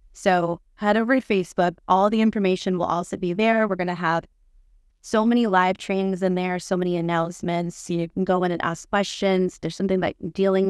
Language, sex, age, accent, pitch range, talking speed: English, female, 20-39, American, 170-195 Hz, 200 wpm